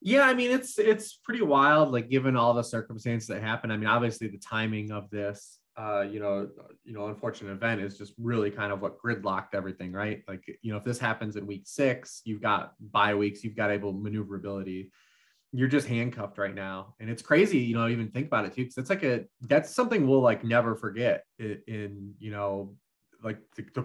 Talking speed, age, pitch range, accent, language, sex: 220 wpm, 20-39, 105-130 Hz, American, English, male